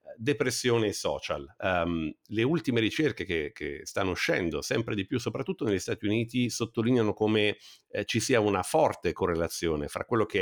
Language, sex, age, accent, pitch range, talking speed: Italian, male, 50-69, native, 95-125 Hz, 155 wpm